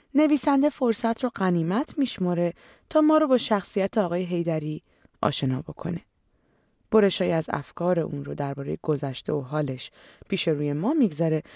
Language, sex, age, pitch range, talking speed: Persian, female, 30-49, 155-250 Hz, 140 wpm